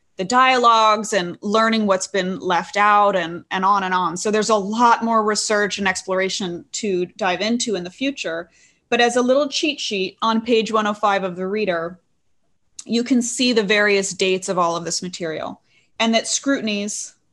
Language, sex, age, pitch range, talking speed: English, female, 30-49, 190-230 Hz, 185 wpm